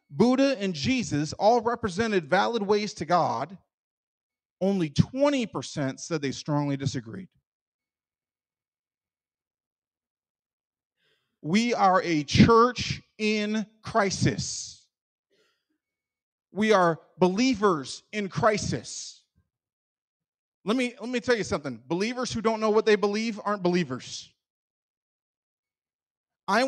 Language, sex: English, male